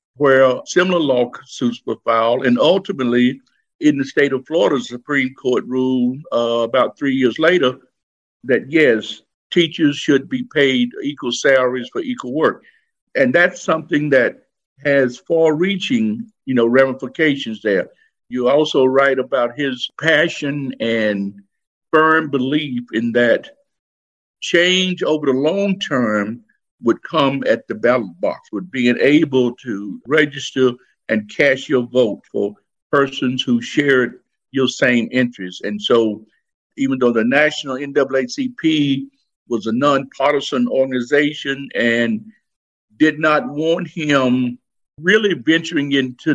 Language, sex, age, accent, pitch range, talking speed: English, male, 60-79, American, 125-165 Hz, 130 wpm